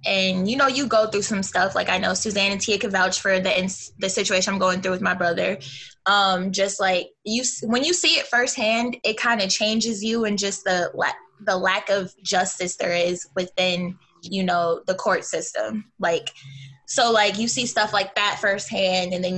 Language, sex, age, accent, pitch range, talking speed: English, female, 20-39, American, 180-215 Hz, 215 wpm